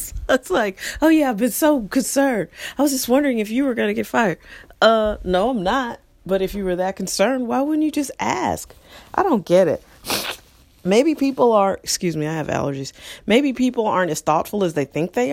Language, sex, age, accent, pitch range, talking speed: English, female, 30-49, American, 160-250 Hz, 215 wpm